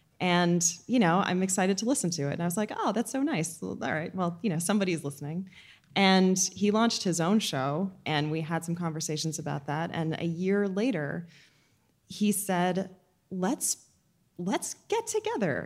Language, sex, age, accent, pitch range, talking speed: English, female, 20-39, American, 165-215 Hz, 180 wpm